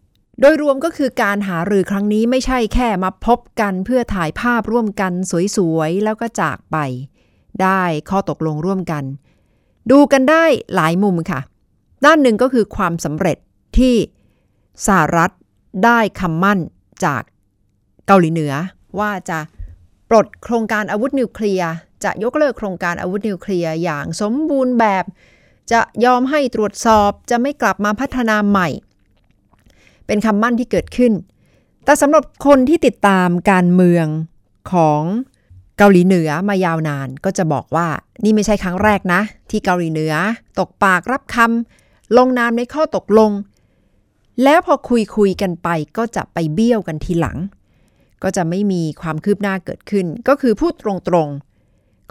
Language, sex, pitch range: Thai, female, 160-225 Hz